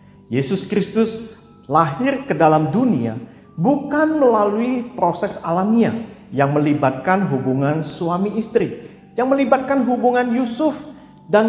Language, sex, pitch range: Indonesian, male, 140-225 Hz